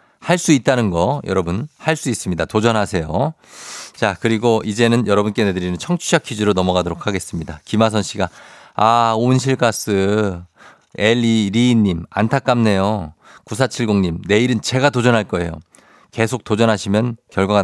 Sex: male